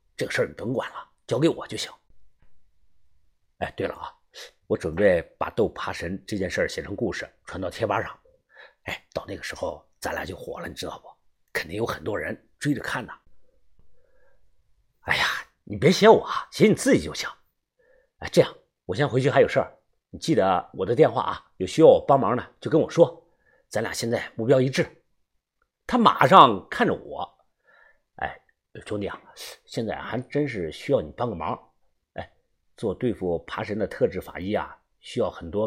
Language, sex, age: Chinese, male, 50-69